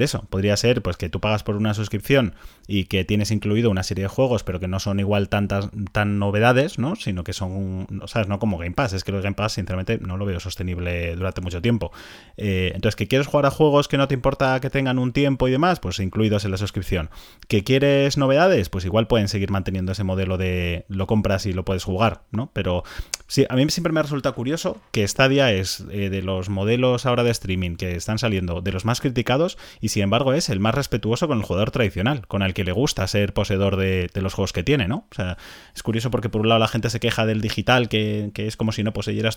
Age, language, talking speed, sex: 30-49, Spanish, 245 wpm, male